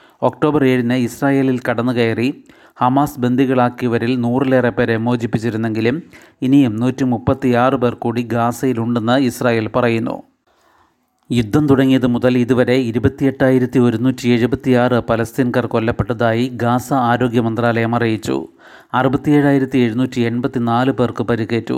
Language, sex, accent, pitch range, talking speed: Malayalam, male, native, 120-130 Hz, 90 wpm